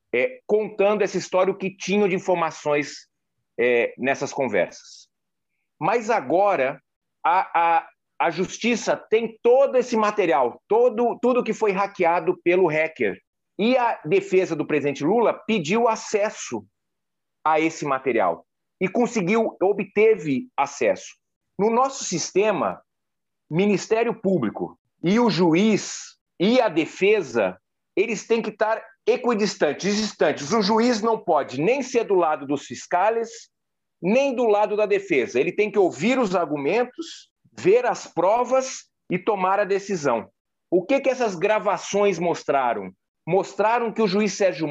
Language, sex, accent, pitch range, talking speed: Spanish, male, Brazilian, 185-245 Hz, 135 wpm